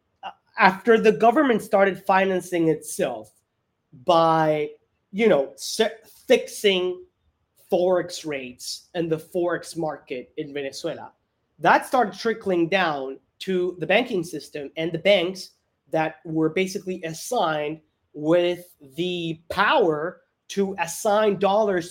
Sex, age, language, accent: male, 30-49, English, American